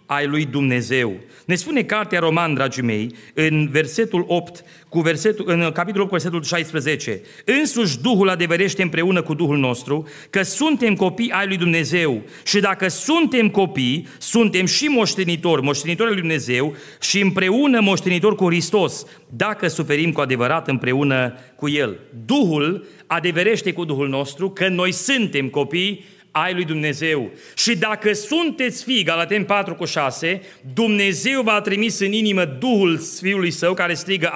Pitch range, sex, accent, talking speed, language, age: 165-220 Hz, male, native, 145 wpm, Romanian, 40-59